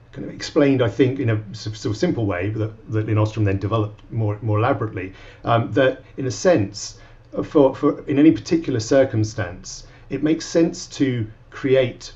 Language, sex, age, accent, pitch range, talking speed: English, male, 40-59, British, 105-130 Hz, 180 wpm